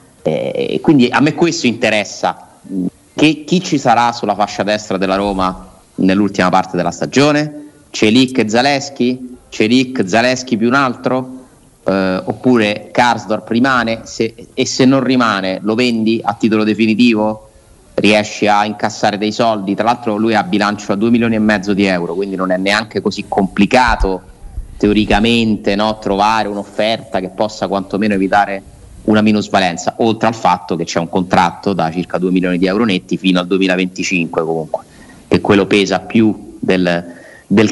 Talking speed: 150 wpm